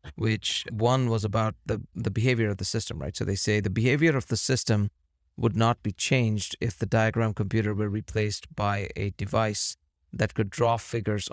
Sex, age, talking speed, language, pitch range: male, 30-49, 190 wpm, English, 100-115 Hz